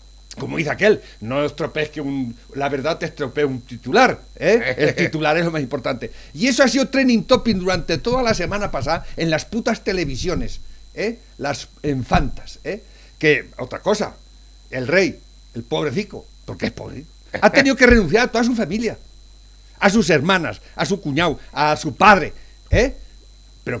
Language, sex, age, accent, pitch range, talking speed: Spanish, male, 60-79, Spanish, 145-235 Hz, 170 wpm